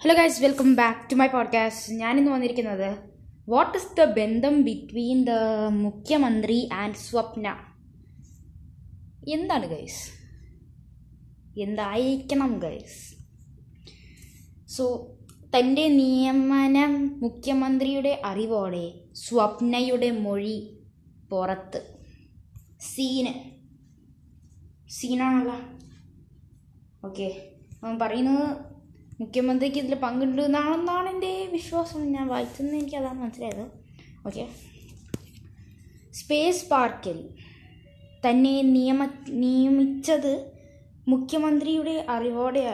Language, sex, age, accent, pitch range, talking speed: Malayalam, female, 20-39, native, 210-275 Hz, 75 wpm